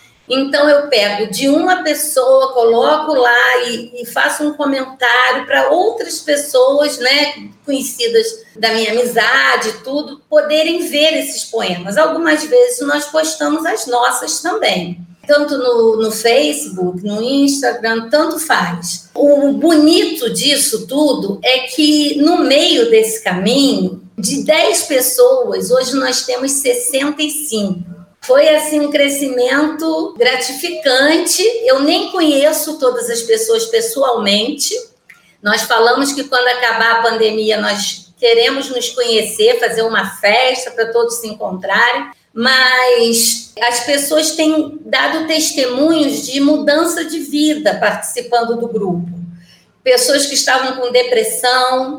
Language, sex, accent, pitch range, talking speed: Portuguese, female, Brazilian, 230-300 Hz, 120 wpm